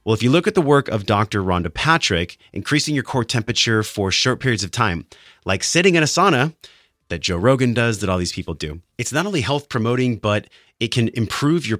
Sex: male